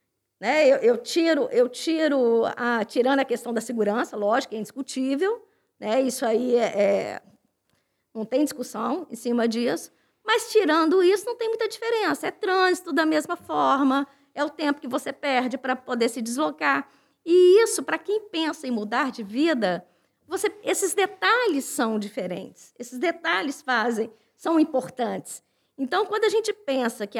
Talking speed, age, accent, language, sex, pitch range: 160 wpm, 20-39, Brazilian, Portuguese, female, 250-370 Hz